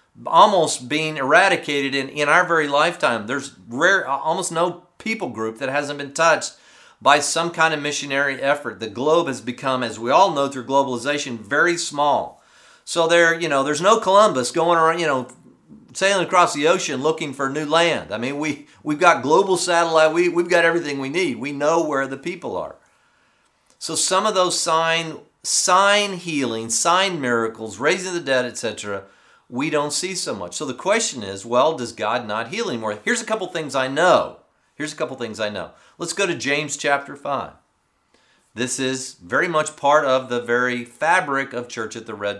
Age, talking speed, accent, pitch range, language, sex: 50-69, 190 wpm, American, 130-170 Hz, English, male